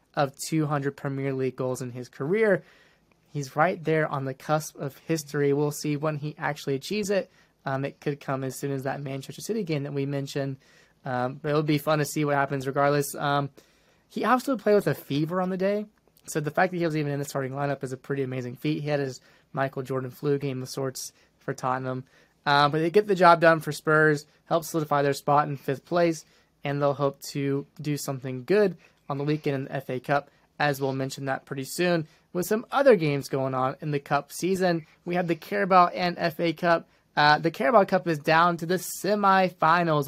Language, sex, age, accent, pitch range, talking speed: English, male, 20-39, American, 140-175 Hz, 220 wpm